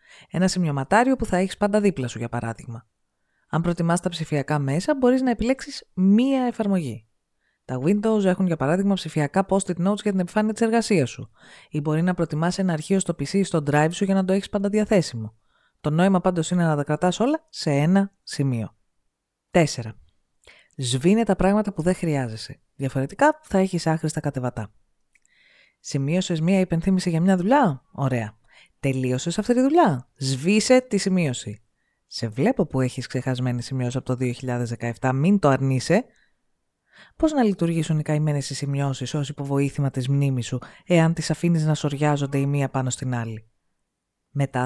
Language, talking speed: Greek, 165 wpm